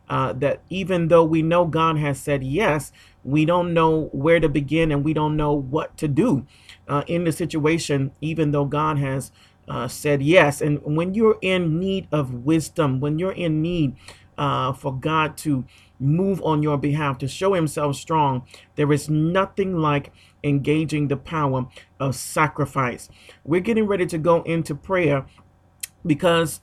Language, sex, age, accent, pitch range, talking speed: English, male, 40-59, American, 135-160 Hz, 165 wpm